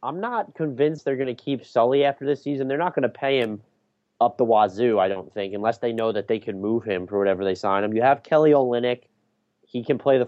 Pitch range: 110-135 Hz